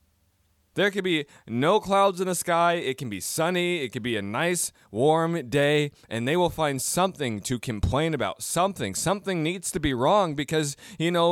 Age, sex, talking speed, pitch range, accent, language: 20-39, male, 190 wpm, 125-175 Hz, American, English